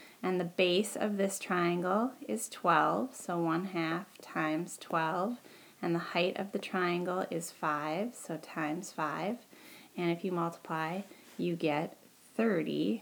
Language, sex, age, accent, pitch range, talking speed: English, female, 20-39, American, 170-215 Hz, 145 wpm